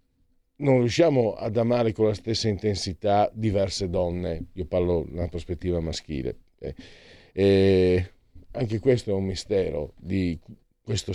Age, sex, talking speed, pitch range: 50-69, male, 125 wpm, 85-120 Hz